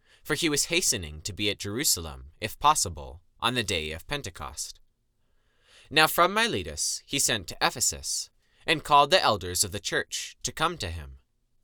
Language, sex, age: English, male, 20-39